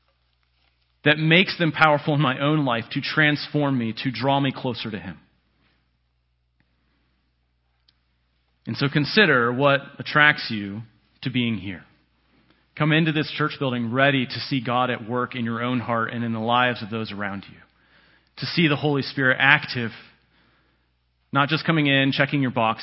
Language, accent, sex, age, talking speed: English, American, male, 30-49, 165 wpm